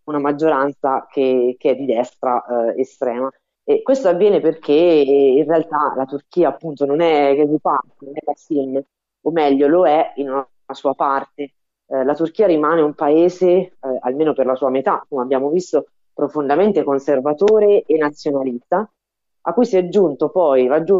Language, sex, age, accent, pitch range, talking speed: Italian, female, 30-49, native, 135-155 Hz, 170 wpm